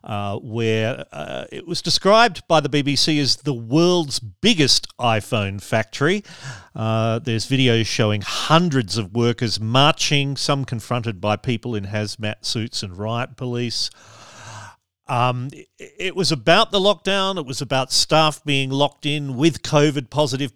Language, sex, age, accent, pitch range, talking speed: English, male, 40-59, Australian, 110-155 Hz, 145 wpm